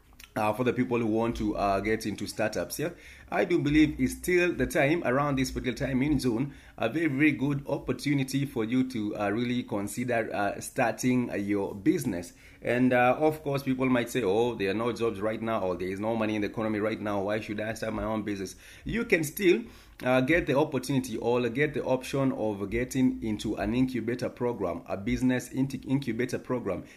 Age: 30-49